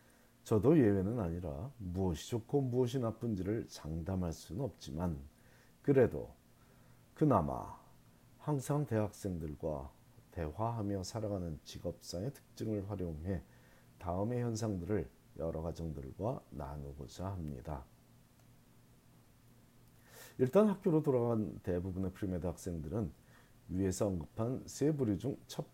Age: 40-59